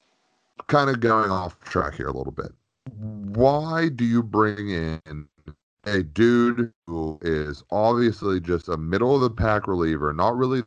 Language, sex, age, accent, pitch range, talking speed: English, male, 30-49, American, 80-105 Hz, 140 wpm